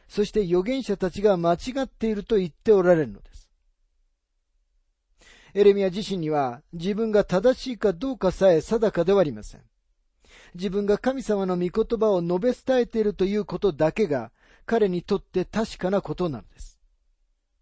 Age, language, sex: 40-59, Japanese, male